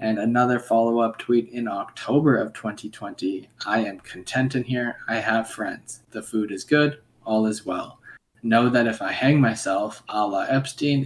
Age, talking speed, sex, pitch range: 20-39, 175 wpm, male, 110-130 Hz